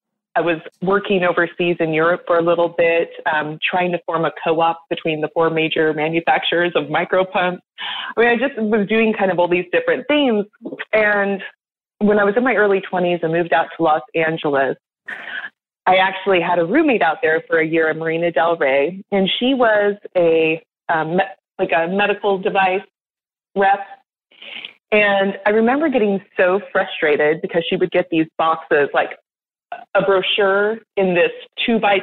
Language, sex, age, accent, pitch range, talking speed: English, female, 30-49, American, 165-205 Hz, 175 wpm